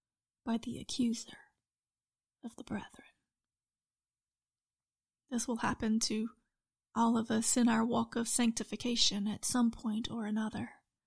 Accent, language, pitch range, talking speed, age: American, English, 220-250 Hz, 125 wpm, 30-49